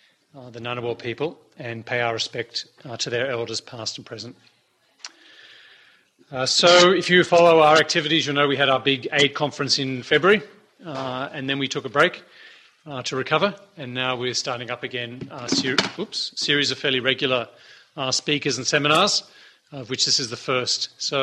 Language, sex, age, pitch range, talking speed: English, male, 40-59, 125-150 Hz, 180 wpm